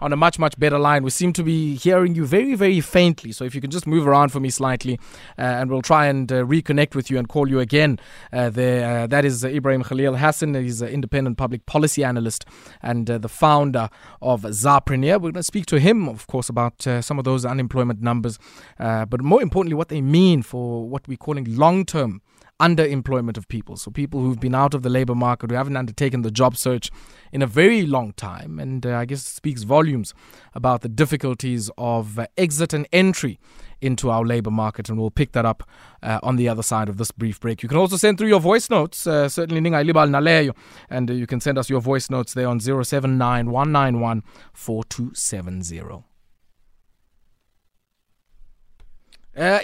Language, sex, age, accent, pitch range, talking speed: English, male, 20-39, South African, 120-150 Hz, 200 wpm